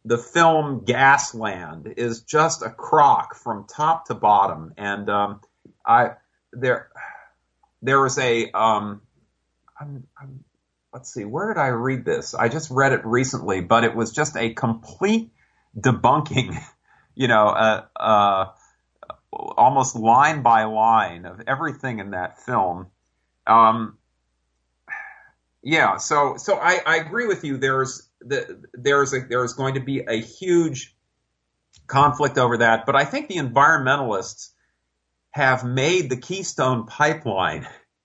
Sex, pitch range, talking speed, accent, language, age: male, 105-135 Hz, 130 wpm, American, English, 40-59